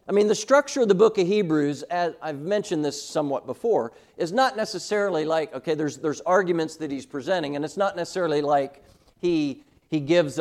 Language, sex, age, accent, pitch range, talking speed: English, male, 50-69, American, 145-185 Hz, 195 wpm